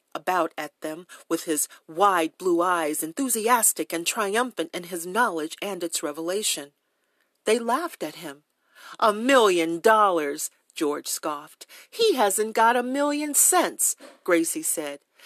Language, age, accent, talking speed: English, 40-59, American, 135 wpm